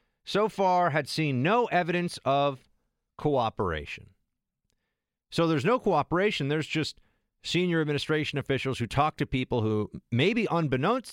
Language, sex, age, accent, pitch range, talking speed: English, male, 40-59, American, 100-150 Hz, 130 wpm